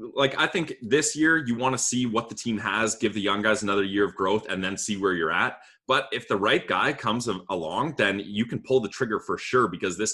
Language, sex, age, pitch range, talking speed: English, male, 20-39, 100-140 Hz, 260 wpm